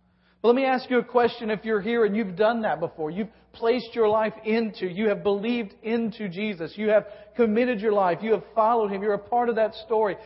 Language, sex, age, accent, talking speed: English, male, 40-59, American, 230 wpm